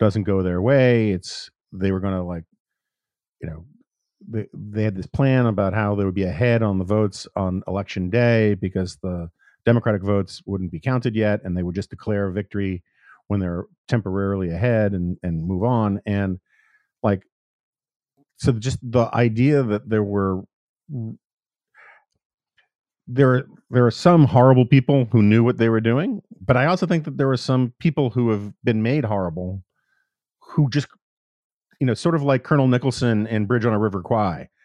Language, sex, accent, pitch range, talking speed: English, male, American, 100-130 Hz, 175 wpm